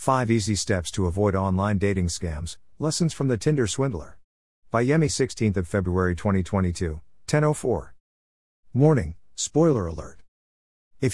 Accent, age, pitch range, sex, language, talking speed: American, 50-69, 85-120 Hz, male, English, 125 wpm